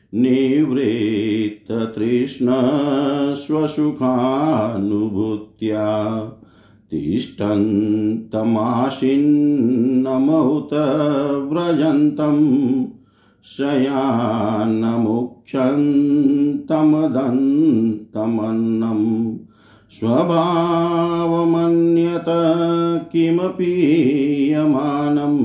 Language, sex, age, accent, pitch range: Hindi, male, 50-69, native, 110-155 Hz